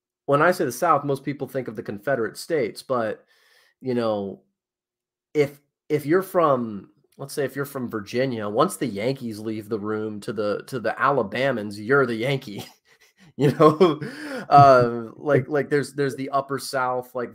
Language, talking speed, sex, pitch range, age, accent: English, 175 wpm, male, 110-130 Hz, 30-49, American